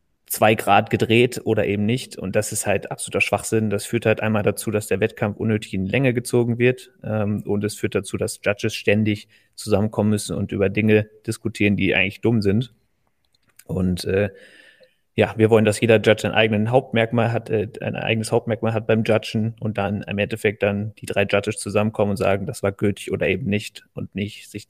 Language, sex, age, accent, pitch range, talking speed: German, male, 30-49, German, 100-110 Hz, 195 wpm